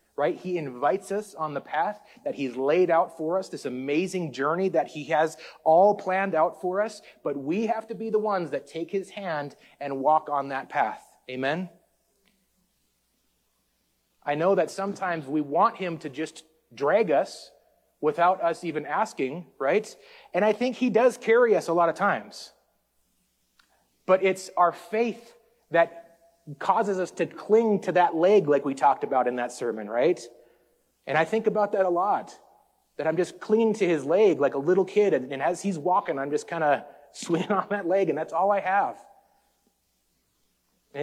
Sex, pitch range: male, 145-195 Hz